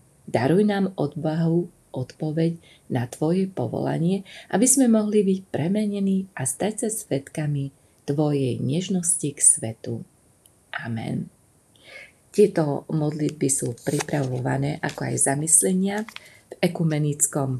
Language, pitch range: Slovak, 135-175 Hz